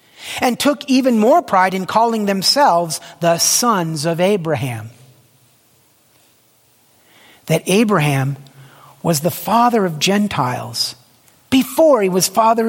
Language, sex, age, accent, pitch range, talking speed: English, male, 50-69, American, 145-220 Hz, 110 wpm